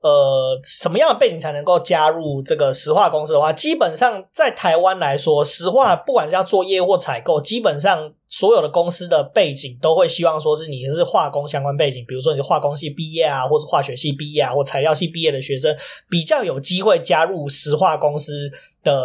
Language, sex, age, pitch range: Chinese, male, 20-39, 140-185 Hz